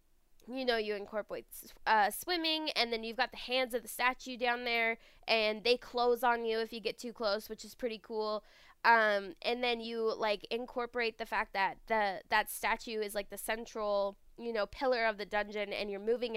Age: 10-29